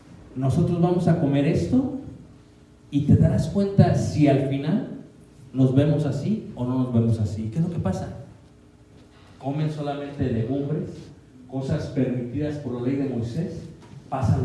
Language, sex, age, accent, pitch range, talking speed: Spanish, male, 40-59, Mexican, 125-155 Hz, 150 wpm